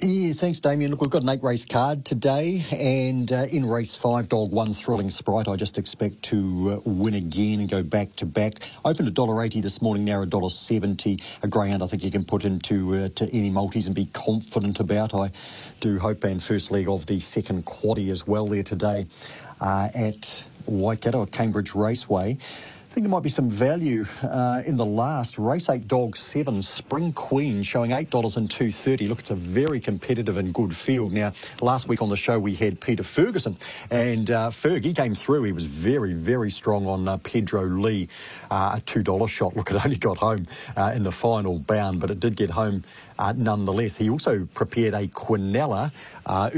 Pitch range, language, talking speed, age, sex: 100-120 Hz, English, 205 wpm, 40-59, male